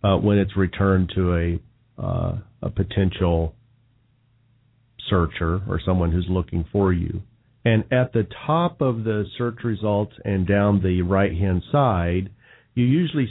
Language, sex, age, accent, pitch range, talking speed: English, male, 50-69, American, 90-115 Hz, 135 wpm